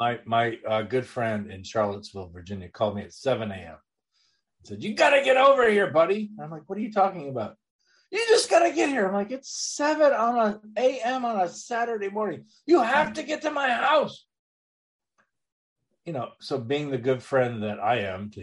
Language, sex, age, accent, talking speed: English, male, 50-69, American, 210 wpm